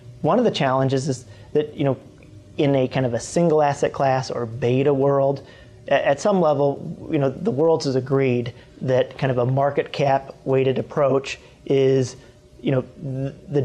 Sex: male